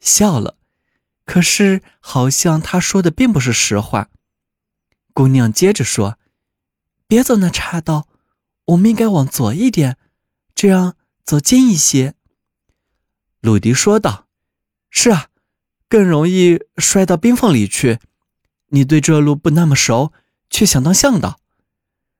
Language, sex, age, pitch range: Chinese, male, 20-39, 125-195 Hz